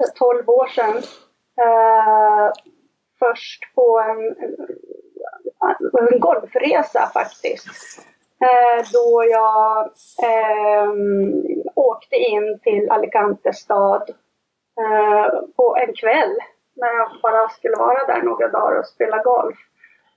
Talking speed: 90 wpm